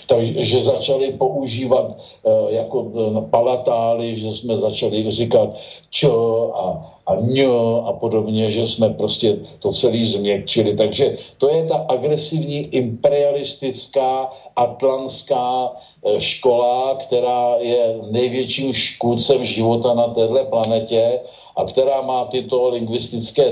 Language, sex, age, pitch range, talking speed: Slovak, male, 50-69, 115-130 Hz, 115 wpm